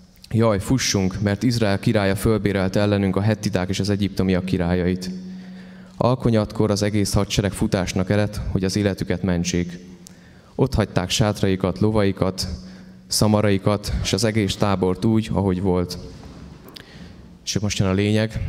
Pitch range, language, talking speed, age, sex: 95-110 Hz, Hungarian, 130 wpm, 20-39, male